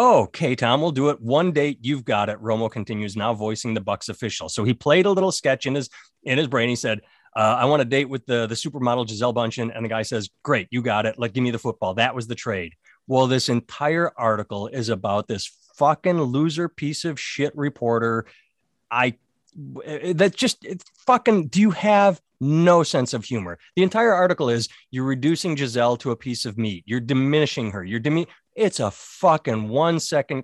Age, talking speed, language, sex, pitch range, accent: 30-49, 210 wpm, English, male, 110-145 Hz, American